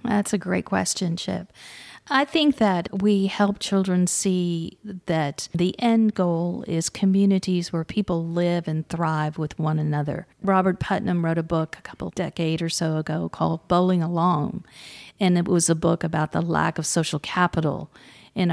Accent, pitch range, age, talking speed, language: American, 165-195 Hz, 40-59, 170 wpm, English